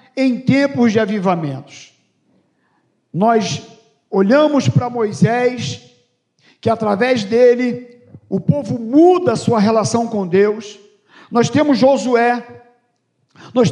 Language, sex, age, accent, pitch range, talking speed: Portuguese, male, 50-69, Brazilian, 220-275 Hz, 95 wpm